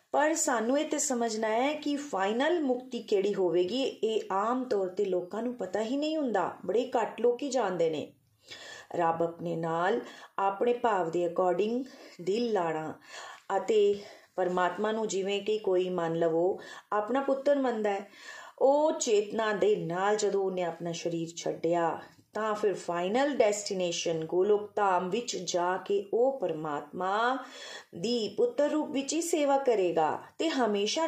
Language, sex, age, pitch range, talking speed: Punjabi, female, 30-49, 180-275 Hz, 135 wpm